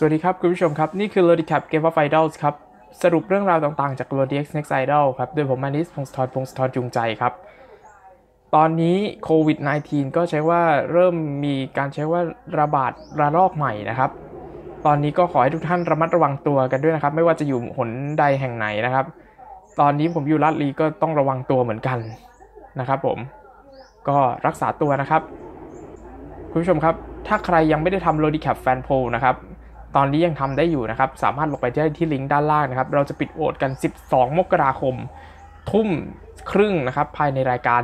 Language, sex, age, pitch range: Thai, male, 20-39, 140-195 Hz